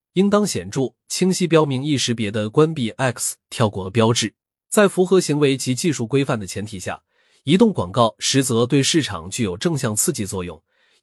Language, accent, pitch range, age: Chinese, native, 110-160 Hz, 30-49